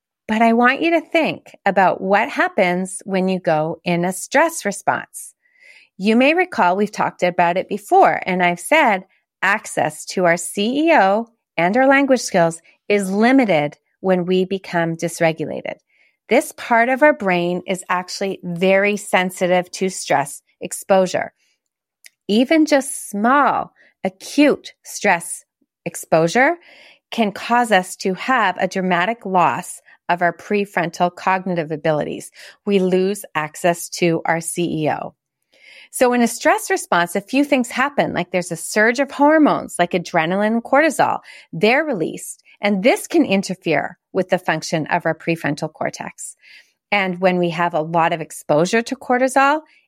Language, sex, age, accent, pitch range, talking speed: English, female, 30-49, American, 175-260 Hz, 145 wpm